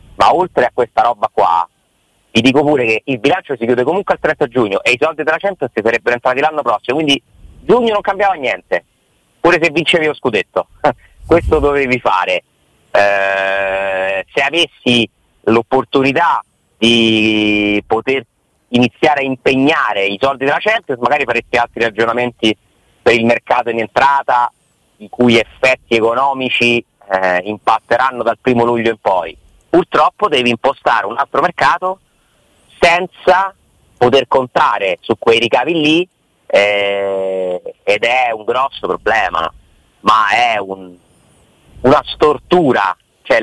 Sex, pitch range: male, 110-145 Hz